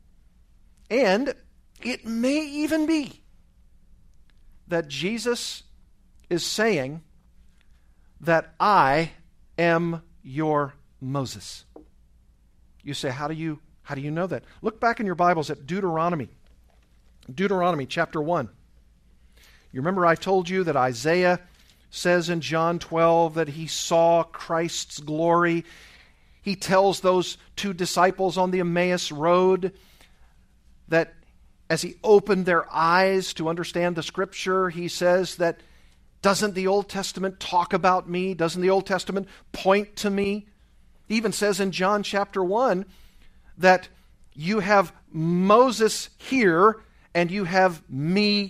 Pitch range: 155-195 Hz